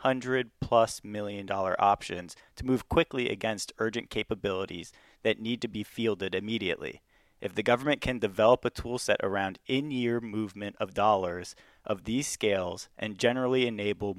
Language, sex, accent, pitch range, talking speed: English, male, American, 100-120 Hz, 150 wpm